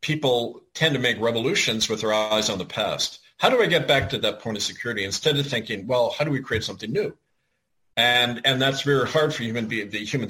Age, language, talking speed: 50-69, English, 235 wpm